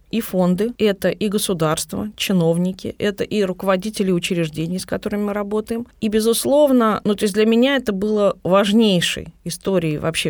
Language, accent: Russian, native